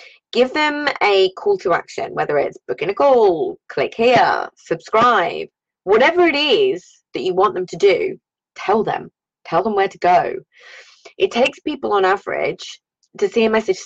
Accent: British